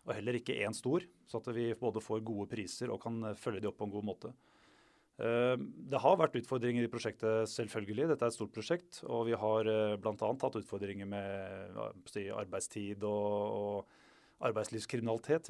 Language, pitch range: English, 105-125 Hz